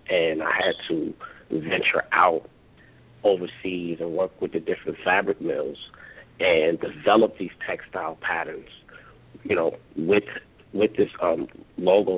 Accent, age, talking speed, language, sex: American, 50-69, 130 wpm, English, male